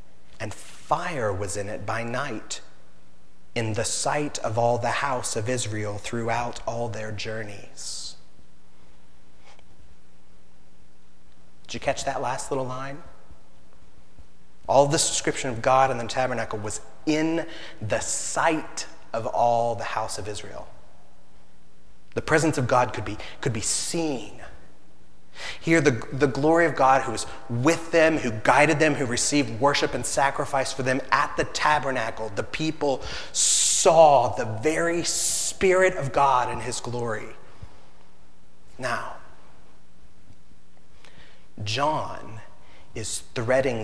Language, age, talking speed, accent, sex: English, 30-49, 125 wpm, American, male